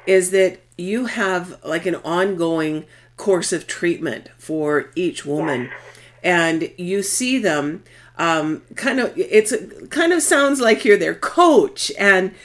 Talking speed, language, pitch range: 140 wpm, English, 155-205 Hz